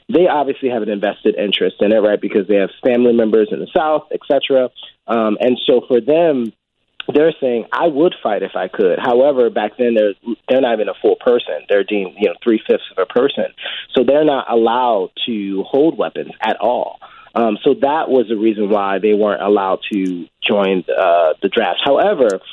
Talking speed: 195 wpm